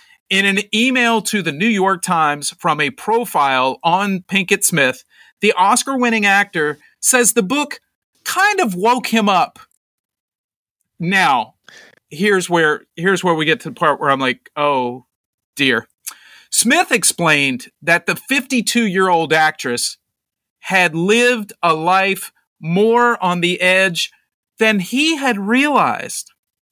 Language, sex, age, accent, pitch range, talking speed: English, male, 40-59, American, 170-220 Hz, 130 wpm